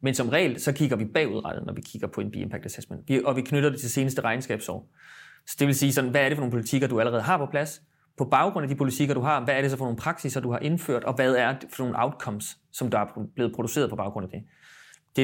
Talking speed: 285 wpm